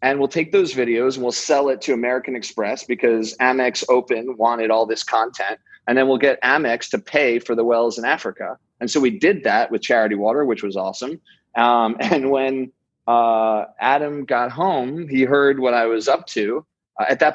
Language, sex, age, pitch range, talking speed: English, male, 30-49, 110-135 Hz, 205 wpm